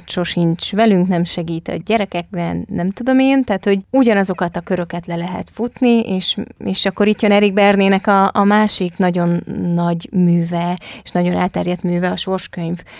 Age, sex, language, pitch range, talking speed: 20-39, female, Hungarian, 175-205 Hz, 165 wpm